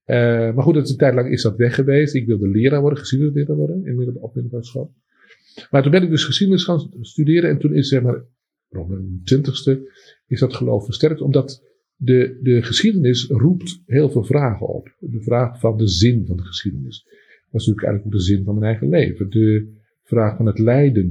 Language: Dutch